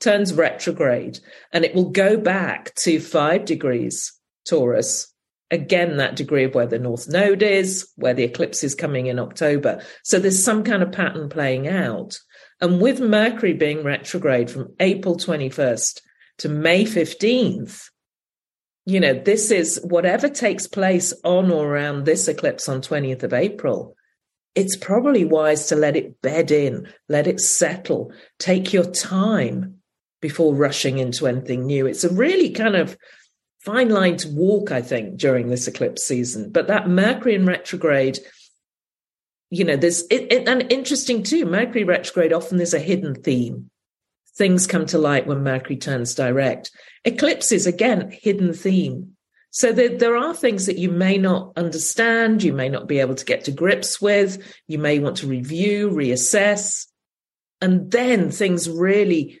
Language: English